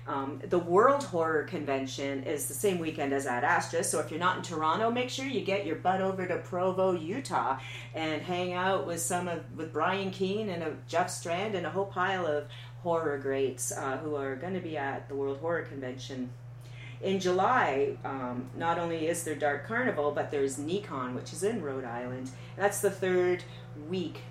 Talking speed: 200 wpm